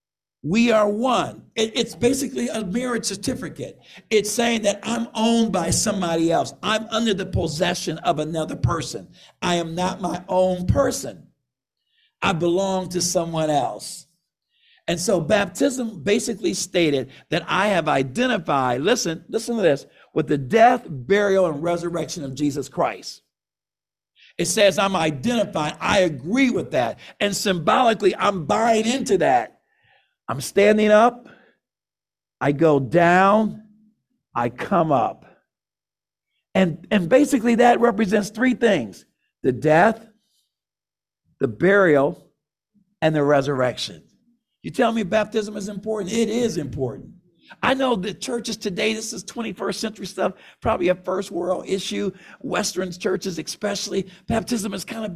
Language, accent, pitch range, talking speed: English, American, 175-225 Hz, 135 wpm